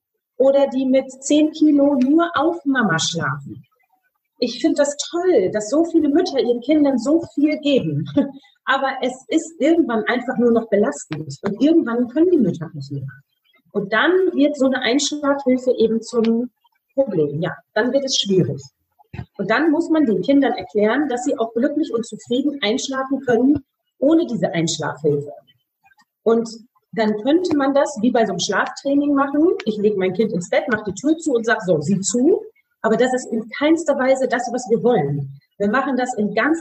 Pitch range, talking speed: 215-290 Hz, 180 wpm